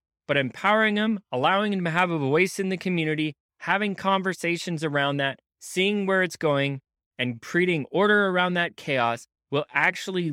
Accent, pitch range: American, 130-175 Hz